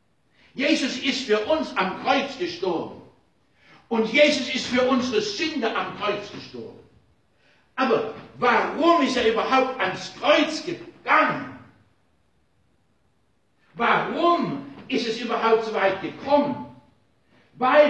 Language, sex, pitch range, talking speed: German, male, 205-295 Hz, 105 wpm